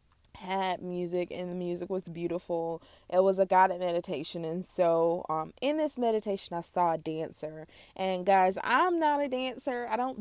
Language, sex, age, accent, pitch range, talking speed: English, female, 20-39, American, 175-225 Hz, 175 wpm